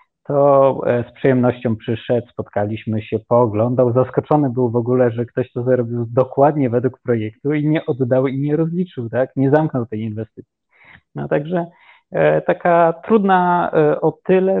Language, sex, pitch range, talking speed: Polish, male, 120-145 Hz, 150 wpm